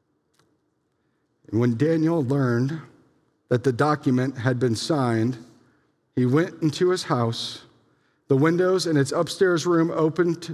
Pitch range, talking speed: 125-165 Hz, 120 wpm